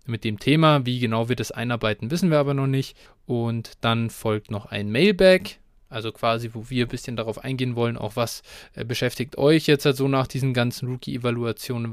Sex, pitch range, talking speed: male, 120-140 Hz, 200 wpm